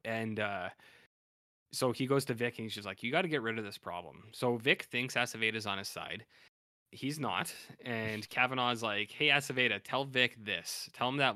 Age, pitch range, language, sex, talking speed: 20-39, 105-130 Hz, English, male, 205 wpm